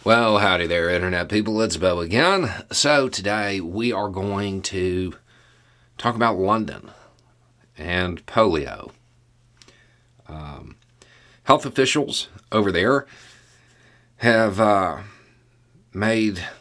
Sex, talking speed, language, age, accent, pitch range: male, 100 wpm, English, 40-59, American, 80-115 Hz